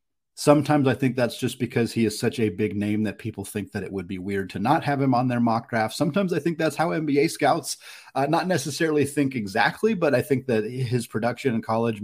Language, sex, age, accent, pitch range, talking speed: English, male, 30-49, American, 105-130 Hz, 240 wpm